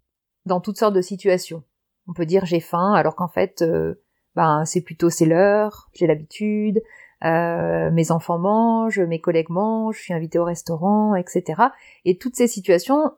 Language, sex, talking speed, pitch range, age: French, female, 175 wpm, 180-240 Hz, 30-49